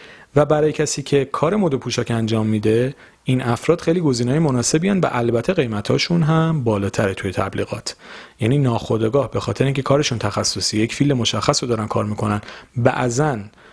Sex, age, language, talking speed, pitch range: male, 40-59, Persian, 165 wpm, 110-140 Hz